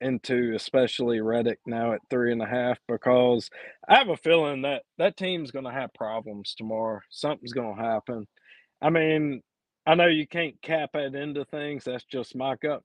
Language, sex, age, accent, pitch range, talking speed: English, male, 40-59, American, 120-155 Hz, 175 wpm